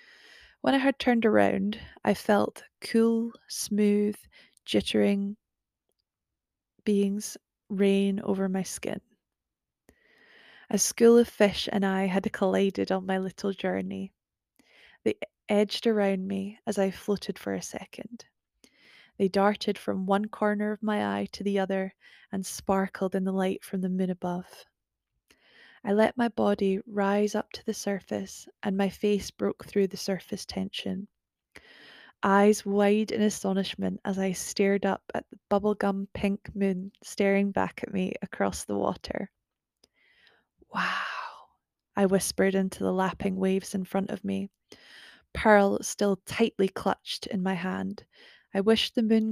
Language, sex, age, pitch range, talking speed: English, female, 20-39, 190-210 Hz, 140 wpm